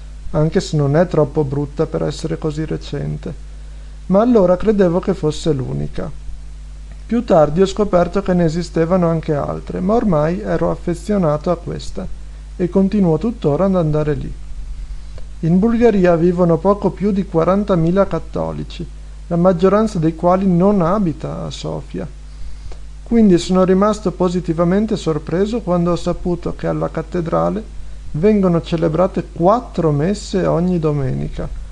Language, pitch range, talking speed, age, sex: Italian, 145-185 Hz, 130 wpm, 50-69, male